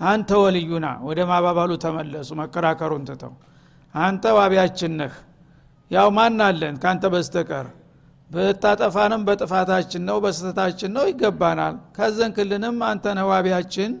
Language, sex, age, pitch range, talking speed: Amharic, male, 60-79, 170-195 Hz, 100 wpm